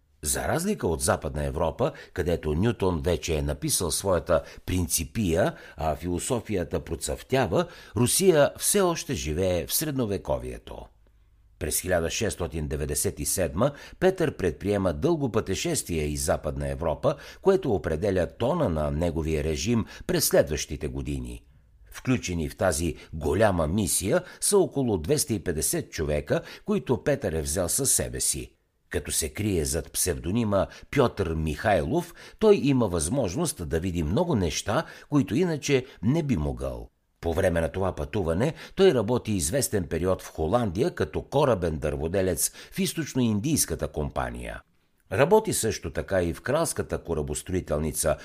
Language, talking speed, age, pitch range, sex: Bulgarian, 120 wpm, 60-79, 75-125 Hz, male